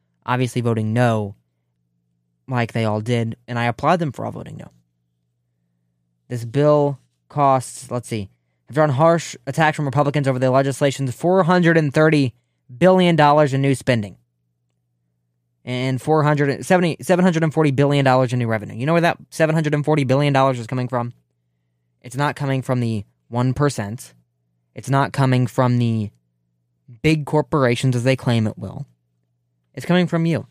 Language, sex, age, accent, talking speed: English, male, 20-39, American, 140 wpm